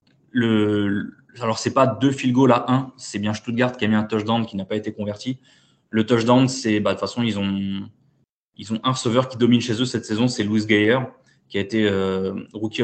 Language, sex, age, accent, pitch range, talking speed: French, male, 20-39, French, 105-125 Hz, 225 wpm